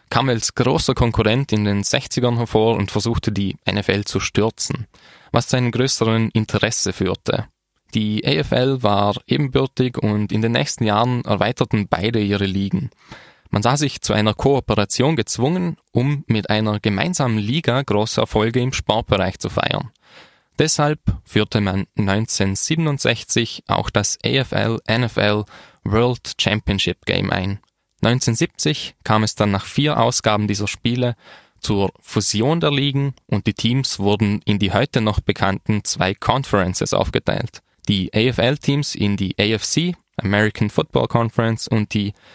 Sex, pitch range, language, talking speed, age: male, 100-125 Hz, German, 140 wpm, 10-29